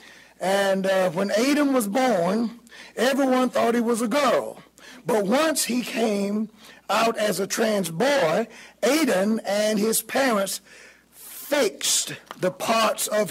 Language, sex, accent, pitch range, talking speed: English, male, American, 195-255 Hz, 130 wpm